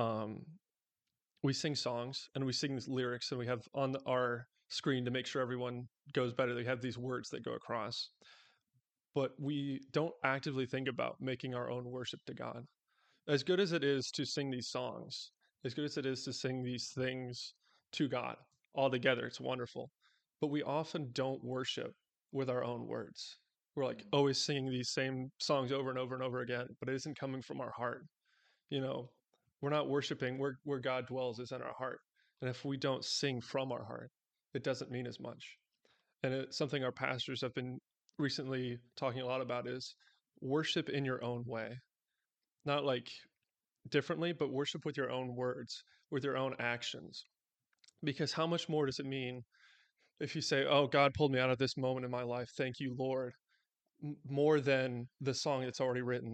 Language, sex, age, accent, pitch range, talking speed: English, male, 20-39, American, 125-140 Hz, 195 wpm